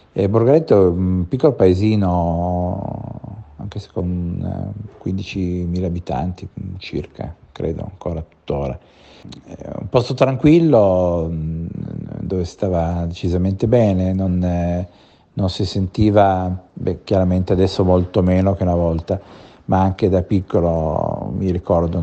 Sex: male